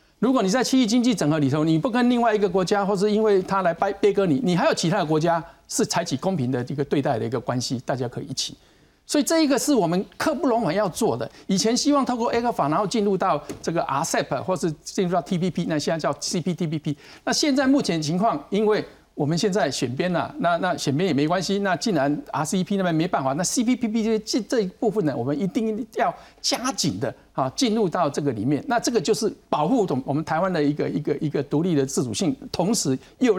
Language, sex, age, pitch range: Chinese, male, 50-69, 145-220 Hz